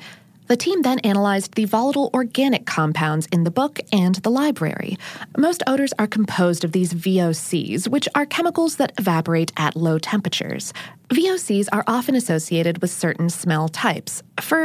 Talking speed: 155 wpm